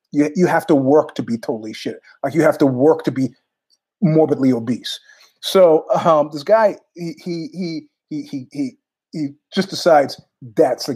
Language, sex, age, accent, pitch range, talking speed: English, male, 30-49, American, 145-195 Hz, 175 wpm